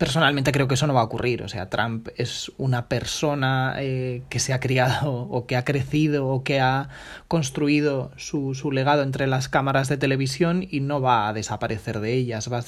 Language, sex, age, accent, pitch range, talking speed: Spanish, male, 30-49, Spanish, 135-165 Hz, 210 wpm